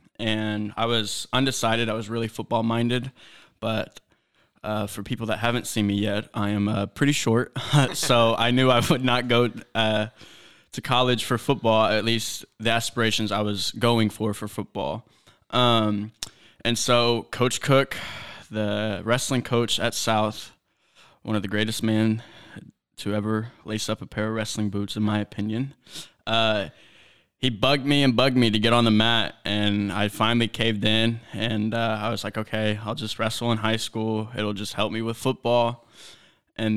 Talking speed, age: 175 wpm, 20-39